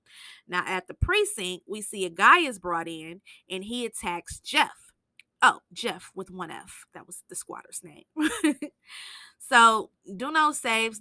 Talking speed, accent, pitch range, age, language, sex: 155 wpm, American, 185-215 Hz, 20-39, English, female